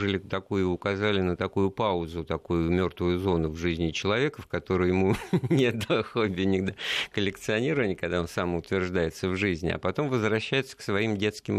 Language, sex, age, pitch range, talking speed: Russian, male, 50-69, 85-110 Hz, 145 wpm